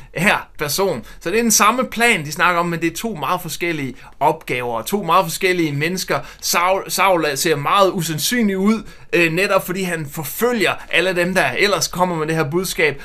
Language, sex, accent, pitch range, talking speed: Danish, male, native, 155-195 Hz, 190 wpm